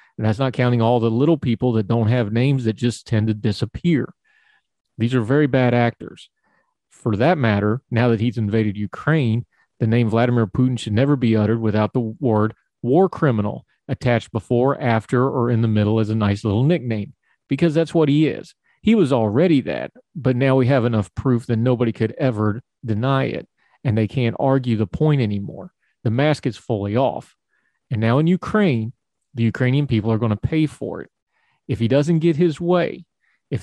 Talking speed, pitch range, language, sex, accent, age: 190 wpm, 110-135 Hz, English, male, American, 40-59